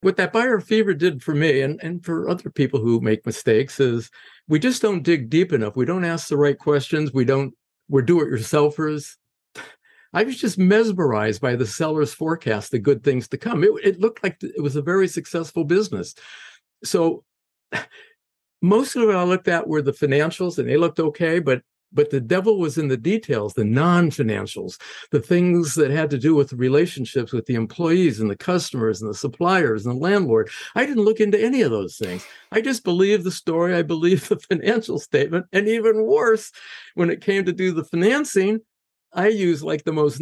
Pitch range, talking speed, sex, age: 140-190 Hz, 200 wpm, male, 50-69